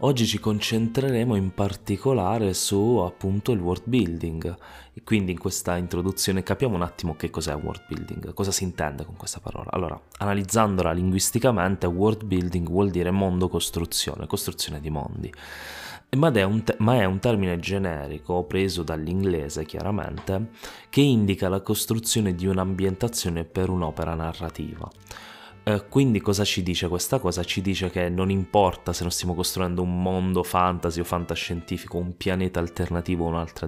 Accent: native